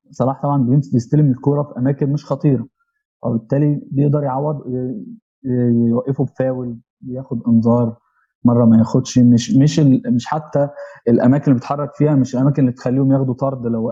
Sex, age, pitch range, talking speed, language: male, 20-39, 120-140 Hz, 140 wpm, Arabic